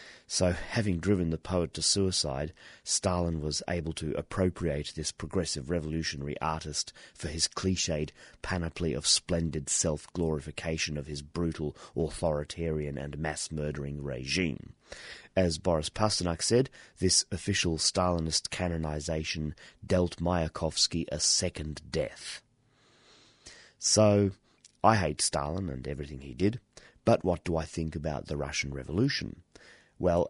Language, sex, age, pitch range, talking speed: English, male, 30-49, 75-90 Hz, 120 wpm